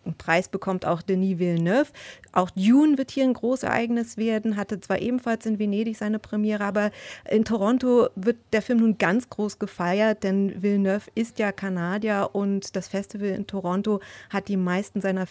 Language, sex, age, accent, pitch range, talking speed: German, female, 30-49, German, 190-225 Hz, 175 wpm